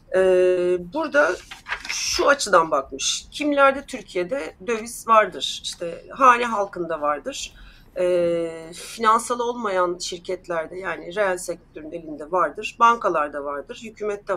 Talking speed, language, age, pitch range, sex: 105 wpm, Turkish, 40-59, 180-235 Hz, female